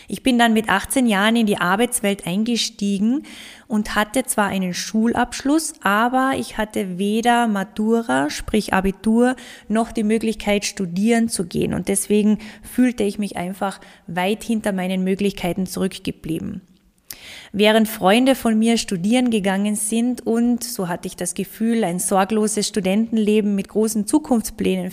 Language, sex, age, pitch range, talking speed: German, female, 20-39, 195-235 Hz, 140 wpm